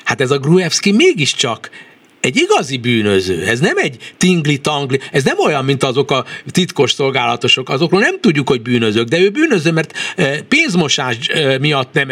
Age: 60-79